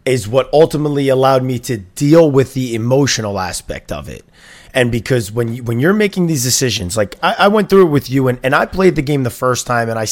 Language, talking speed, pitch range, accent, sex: English, 235 wpm, 120-160 Hz, American, male